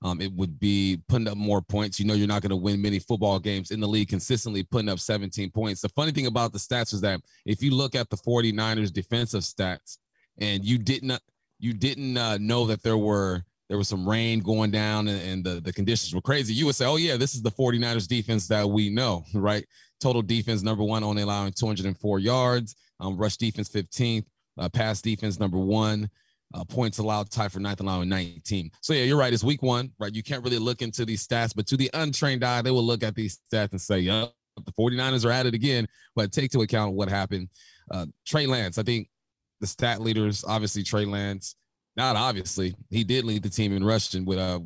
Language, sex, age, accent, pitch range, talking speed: English, male, 30-49, American, 100-120 Hz, 225 wpm